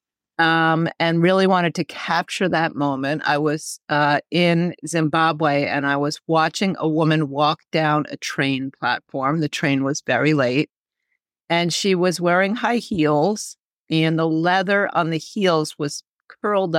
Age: 40-59